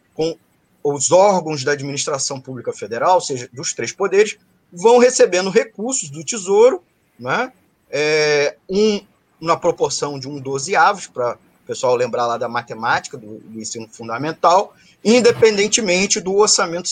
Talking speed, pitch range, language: 130 wpm, 165-245 Hz, Portuguese